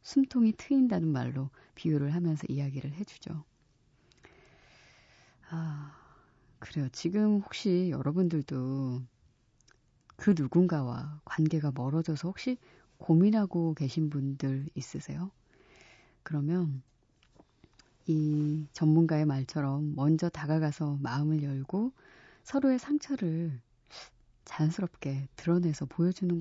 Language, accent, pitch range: Korean, native, 140-190 Hz